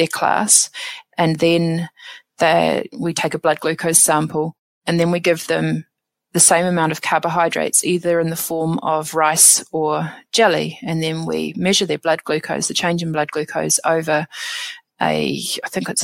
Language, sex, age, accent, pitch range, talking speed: English, female, 30-49, Australian, 160-180 Hz, 170 wpm